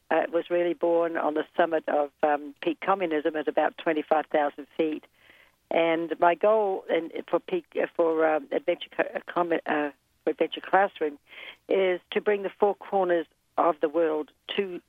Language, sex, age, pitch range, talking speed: English, female, 60-79, 155-175 Hz, 165 wpm